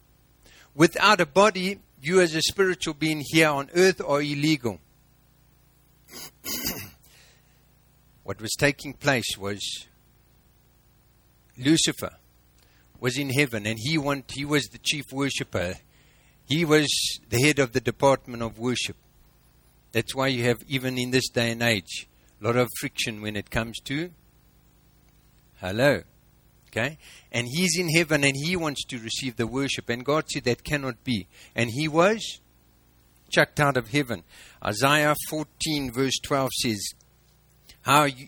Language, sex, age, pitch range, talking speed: English, male, 50-69, 115-145 Hz, 140 wpm